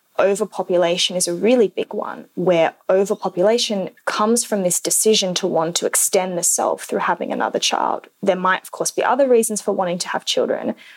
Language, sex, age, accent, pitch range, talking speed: English, female, 20-39, Australian, 180-215 Hz, 185 wpm